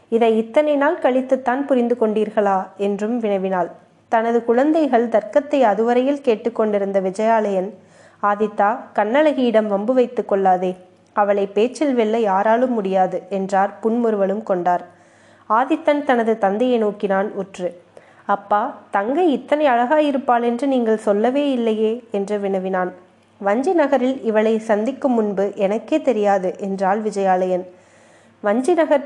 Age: 20-39